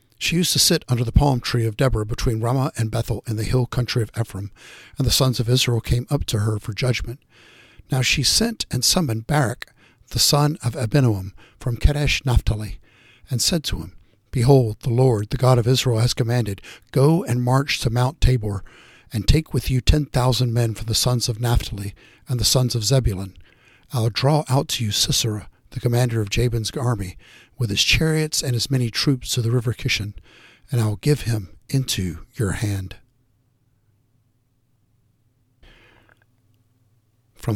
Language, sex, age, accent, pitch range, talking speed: English, male, 60-79, American, 110-125 Hz, 180 wpm